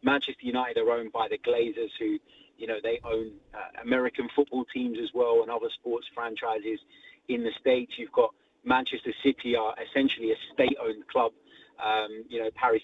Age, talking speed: 30-49, 180 wpm